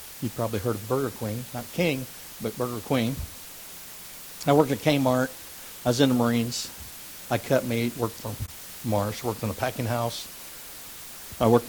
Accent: American